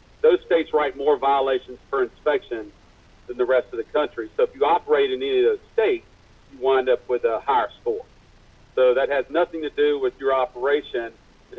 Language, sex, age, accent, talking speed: English, male, 50-69, American, 200 wpm